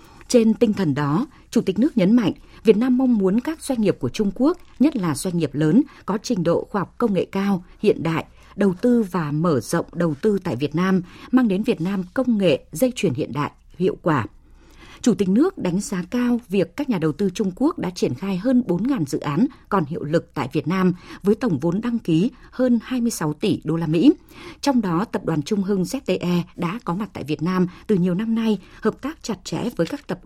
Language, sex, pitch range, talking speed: Vietnamese, female, 170-240 Hz, 230 wpm